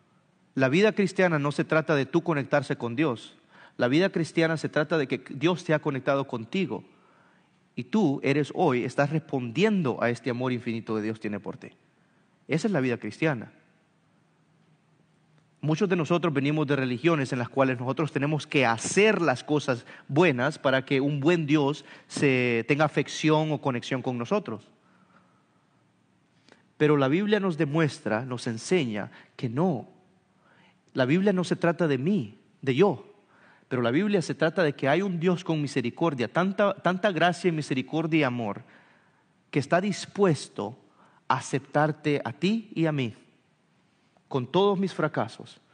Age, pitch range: 40-59, 130-175 Hz